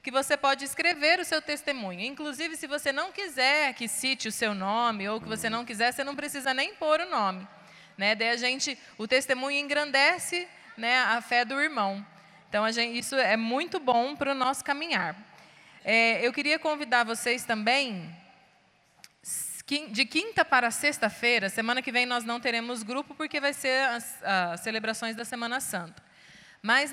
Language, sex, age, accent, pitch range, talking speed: Portuguese, female, 20-39, Brazilian, 210-280 Hz, 175 wpm